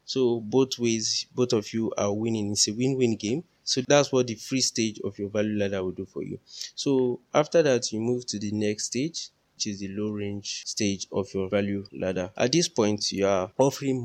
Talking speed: 220 wpm